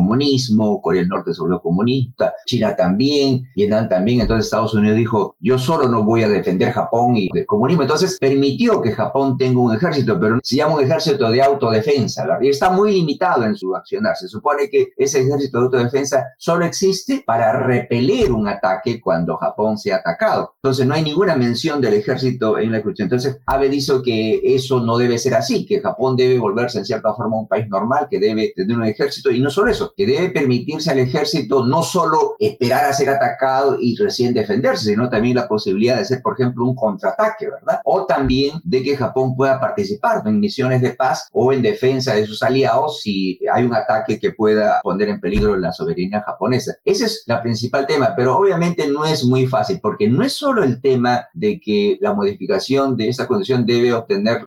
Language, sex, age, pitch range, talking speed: Spanish, male, 50-69, 120-185 Hz, 200 wpm